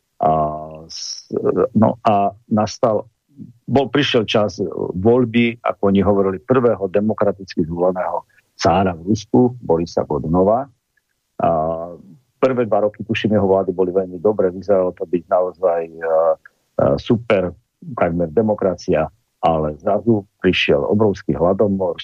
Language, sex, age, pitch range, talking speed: Slovak, male, 50-69, 90-115 Hz, 115 wpm